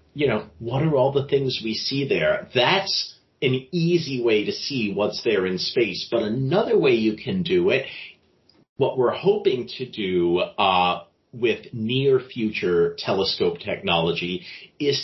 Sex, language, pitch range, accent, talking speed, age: male, English, 105-180 Hz, American, 155 wpm, 40-59